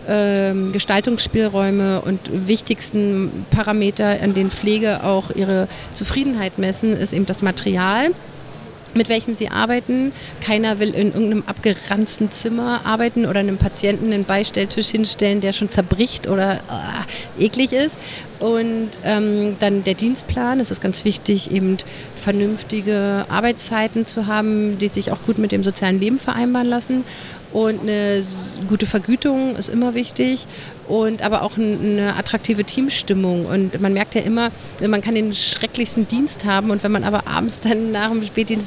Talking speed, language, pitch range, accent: 150 wpm, German, 195-225 Hz, German